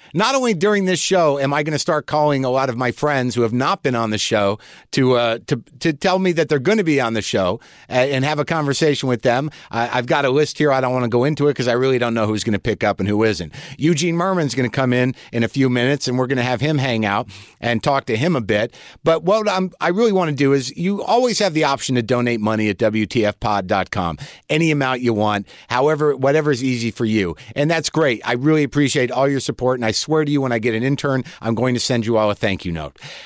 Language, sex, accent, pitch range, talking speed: English, male, American, 120-165 Hz, 275 wpm